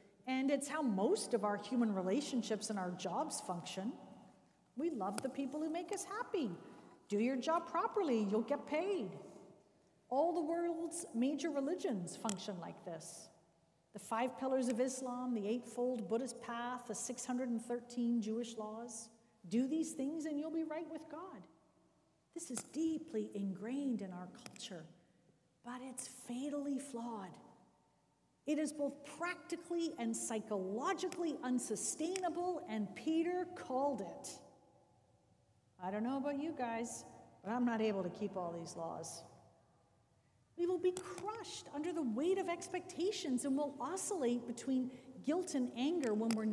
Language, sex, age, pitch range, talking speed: English, female, 50-69, 220-310 Hz, 145 wpm